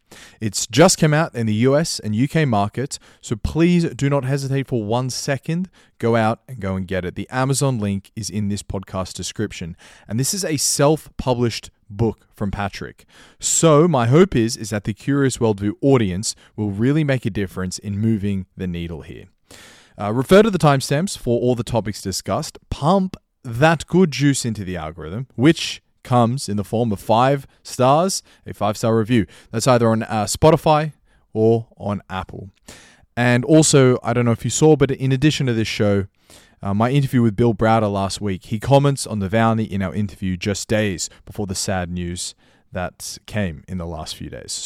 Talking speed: 190 wpm